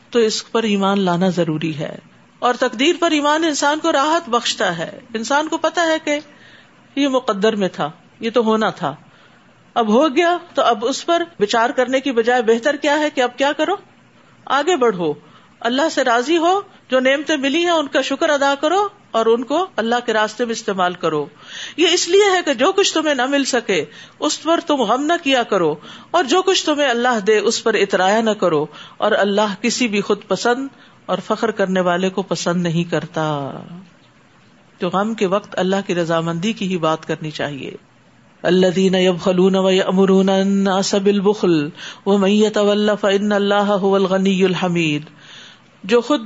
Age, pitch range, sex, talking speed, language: 50-69, 190-280 Hz, female, 175 wpm, Urdu